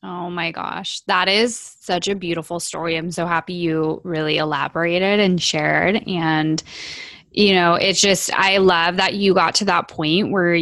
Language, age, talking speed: English, 20-39, 175 wpm